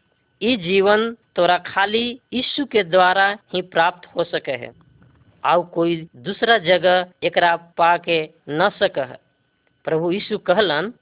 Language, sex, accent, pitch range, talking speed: Hindi, female, native, 165-205 Hz, 125 wpm